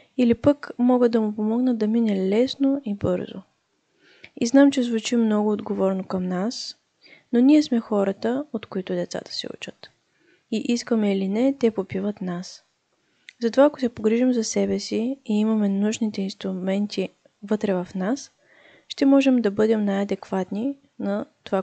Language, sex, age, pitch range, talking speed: Bulgarian, female, 20-39, 195-240 Hz, 155 wpm